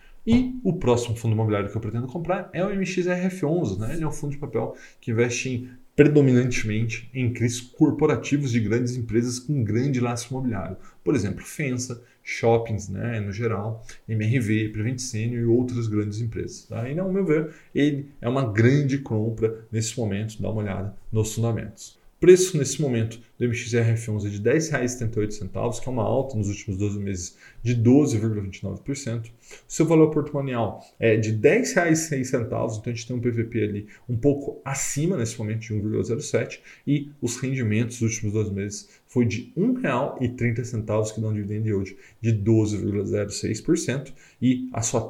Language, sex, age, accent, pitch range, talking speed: Portuguese, male, 20-39, Brazilian, 110-135 Hz, 165 wpm